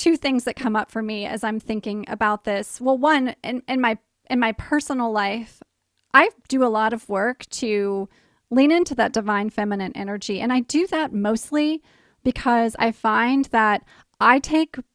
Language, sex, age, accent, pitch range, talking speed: English, female, 20-39, American, 210-250 Hz, 175 wpm